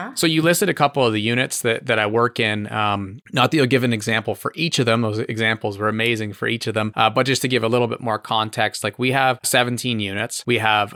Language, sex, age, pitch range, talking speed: English, male, 30-49, 105-125 Hz, 270 wpm